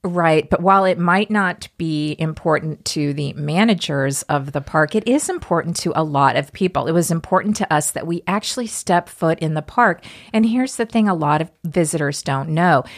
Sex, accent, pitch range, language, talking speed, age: female, American, 150-185 Hz, English, 210 wpm, 40-59